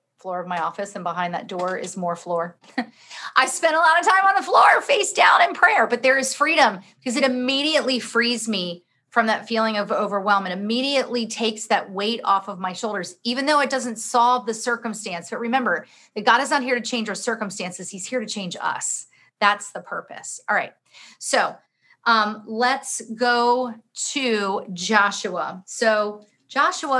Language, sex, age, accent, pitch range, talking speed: English, female, 40-59, American, 195-250 Hz, 185 wpm